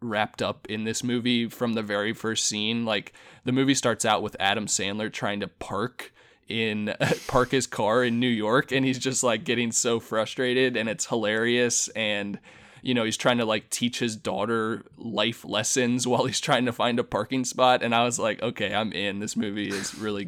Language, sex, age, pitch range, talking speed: English, male, 20-39, 105-120 Hz, 205 wpm